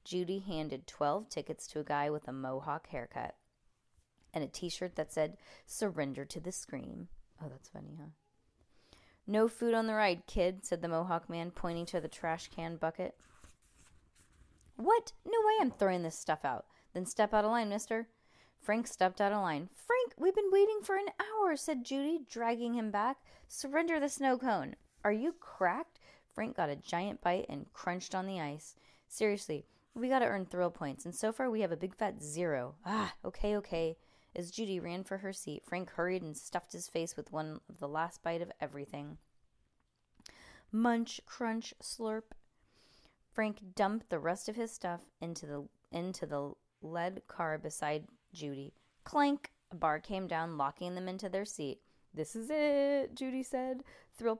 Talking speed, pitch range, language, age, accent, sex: 180 wpm, 160-230 Hz, English, 20-39, American, female